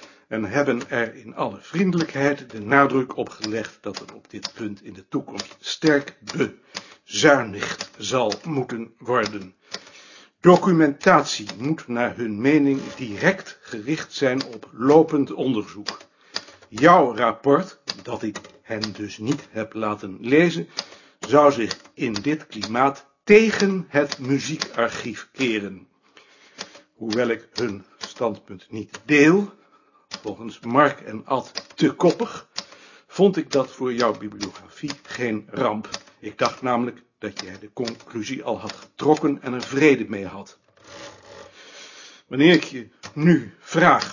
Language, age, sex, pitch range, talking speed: Dutch, 60-79, male, 110-145 Hz, 125 wpm